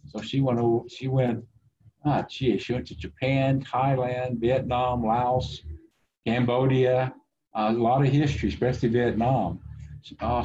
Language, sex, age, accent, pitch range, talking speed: English, male, 50-69, American, 105-135 Hz, 130 wpm